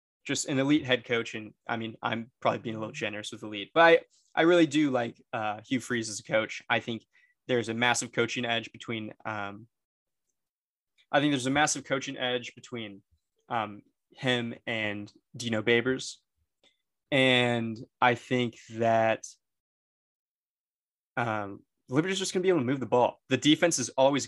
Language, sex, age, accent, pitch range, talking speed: English, male, 20-39, American, 115-130 Hz, 175 wpm